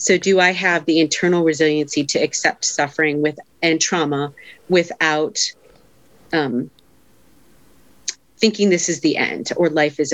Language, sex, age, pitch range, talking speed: English, female, 30-49, 145-175 Hz, 135 wpm